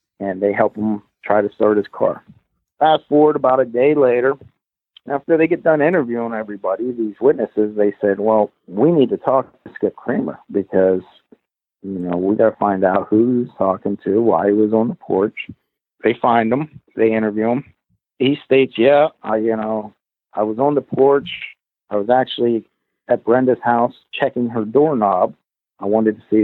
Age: 50-69